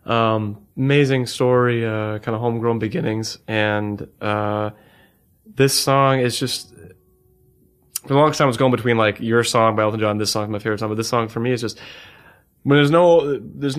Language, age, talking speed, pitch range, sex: English, 20-39, 195 wpm, 110-125 Hz, male